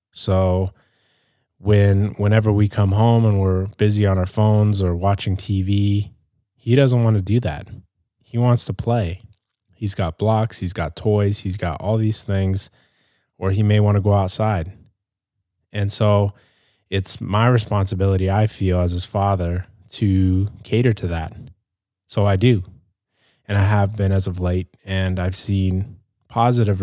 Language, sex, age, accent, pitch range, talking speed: English, male, 20-39, American, 95-110 Hz, 160 wpm